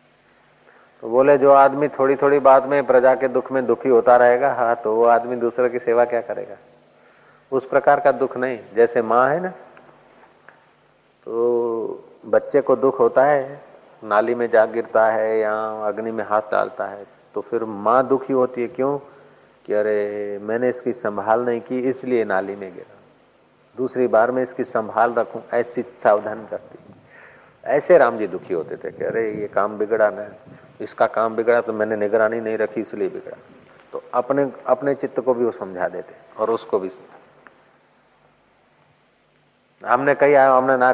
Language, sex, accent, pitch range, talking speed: Hindi, male, native, 110-135 Hz, 165 wpm